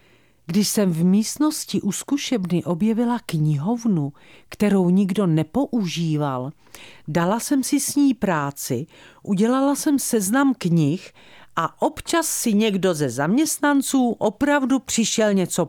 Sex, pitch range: female, 150-220 Hz